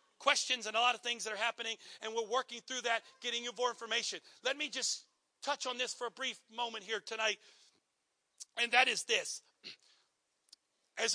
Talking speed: 190 wpm